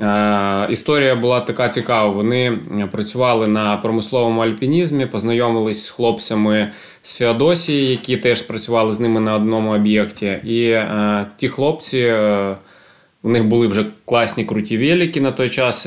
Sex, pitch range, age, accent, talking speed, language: male, 105-125 Hz, 20-39, native, 130 wpm, Ukrainian